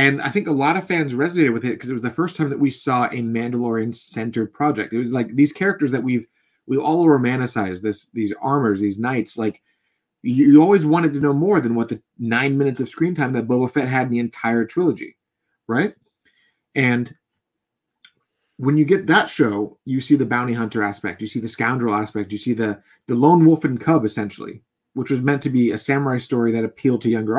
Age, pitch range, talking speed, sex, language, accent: 30-49, 115-150 Hz, 215 wpm, male, English, American